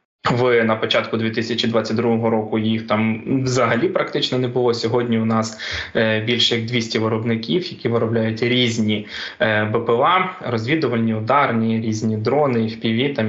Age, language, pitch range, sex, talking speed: 20-39, Ukrainian, 110-120 Hz, male, 130 wpm